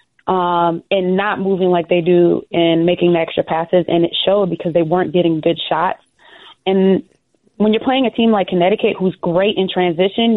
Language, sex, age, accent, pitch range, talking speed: English, female, 20-39, American, 165-200 Hz, 190 wpm